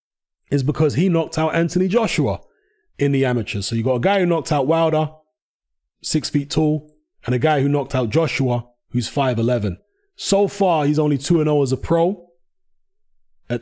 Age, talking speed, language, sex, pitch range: 20-39, 175 wpm, English, male, 120-160 Hz